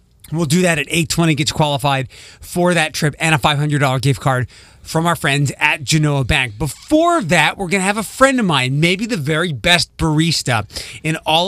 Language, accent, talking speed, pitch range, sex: English, American, 200 wpm, 135-170 Hz, male